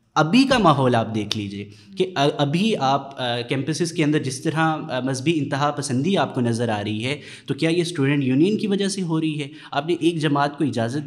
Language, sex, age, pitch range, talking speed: Urdu, male, 20-39, 130-160 Hz, 215 wpm